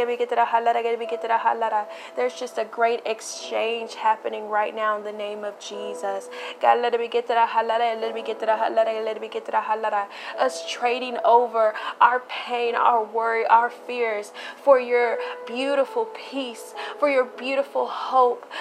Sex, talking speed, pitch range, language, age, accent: female, 185 wpm, 230-270 Hz, English, 20-39, American